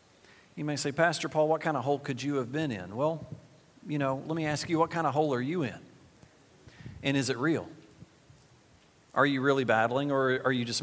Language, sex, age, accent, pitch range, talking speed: English, male, 40-59, American, 125-155 Hz, 220 wpm